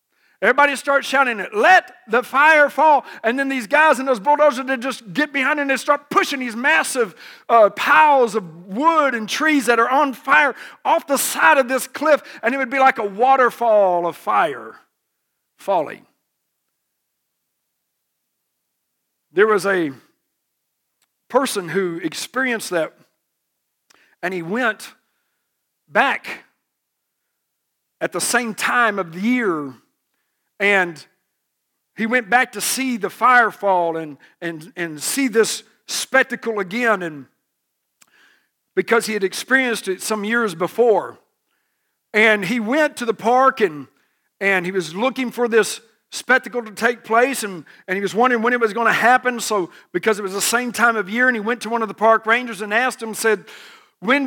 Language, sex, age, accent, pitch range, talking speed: English, male, 50-69, American, 200-260 Hz, 160 wpm